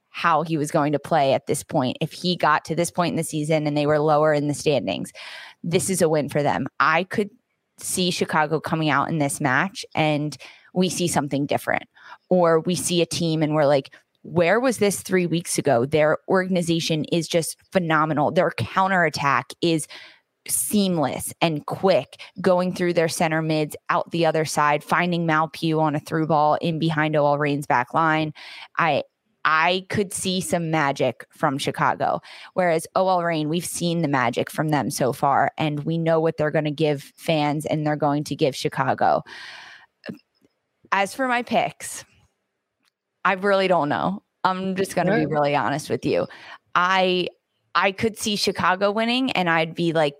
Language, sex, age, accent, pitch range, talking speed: English, female, 20-39, American, 150-180 Hz, 185 wpm